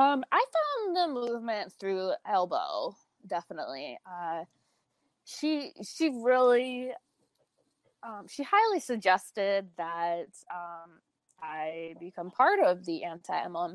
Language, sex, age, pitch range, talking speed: English, female, 20-39, 185-250 Hz, 105 wpm